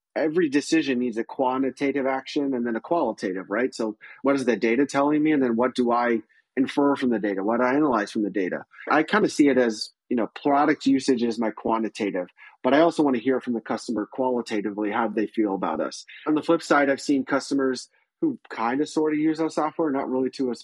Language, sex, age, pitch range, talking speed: English, male, 30-49, 115-140 Hz, 235 wpm